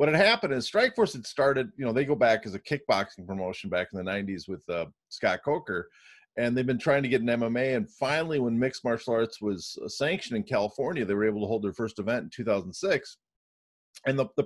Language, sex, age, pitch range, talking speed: English, male, 40-59, 110-140 Hz, 230 wpm